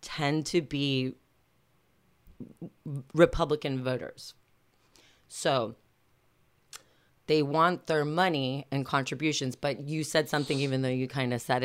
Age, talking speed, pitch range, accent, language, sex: 30-49, 115 wpm, 130-170 Hz, American, English, female